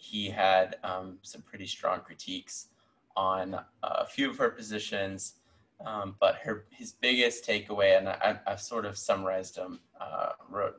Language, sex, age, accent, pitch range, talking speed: English, male, 20-39, American, 95-115 Hz, 155 wpm